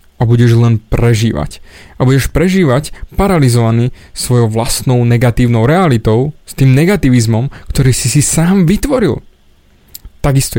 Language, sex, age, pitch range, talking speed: Slovak, male, 30-49, 120-155 Hz, 120 wpm